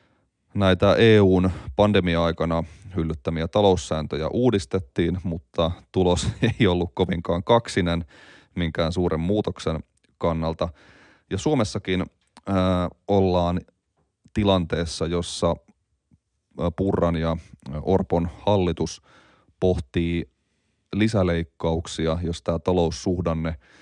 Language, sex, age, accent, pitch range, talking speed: Finnish, male, 30-49, native, 85-100 Hz, 75 wpm